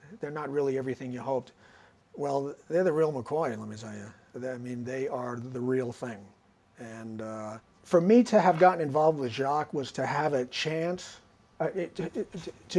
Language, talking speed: English, 185 wpm